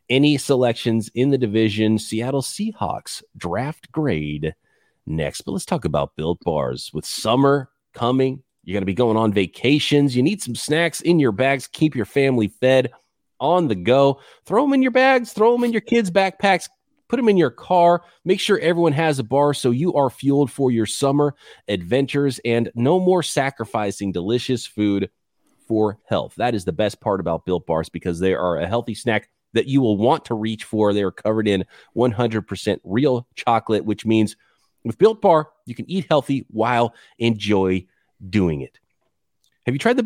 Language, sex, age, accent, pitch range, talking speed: English, male, 30-49, American, 110-175 Hz, 185 wpm